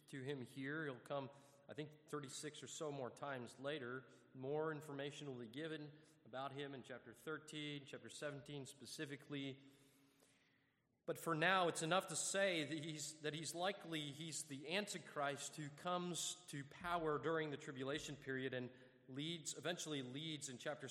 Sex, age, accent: male, 30-49, American